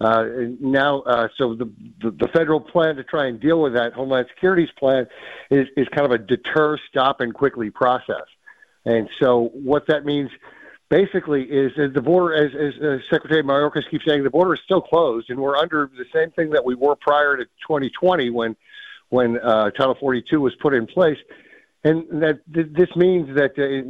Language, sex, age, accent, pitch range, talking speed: English, male, 50-69, American, 120-155 Hz, 200 wpm